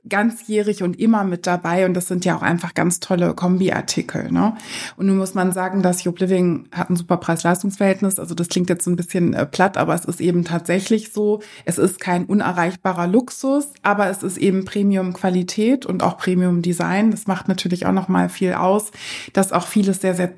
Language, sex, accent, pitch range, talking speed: German, female, German, 185-215 Hz, 195 wpm